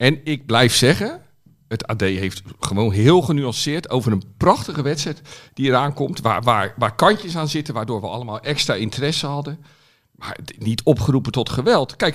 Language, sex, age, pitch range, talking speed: Dutch, male, 50-69, 125-155 Hz, 175 wpm